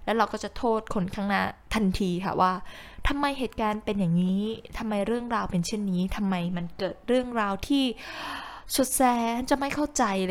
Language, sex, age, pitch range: Thai, female, 10-29, 190-245 Hz